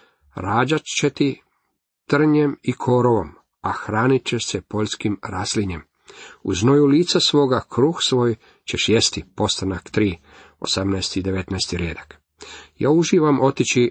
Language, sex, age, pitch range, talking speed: Croatian, male, 40-59, 105-130 Hz, 120 wpm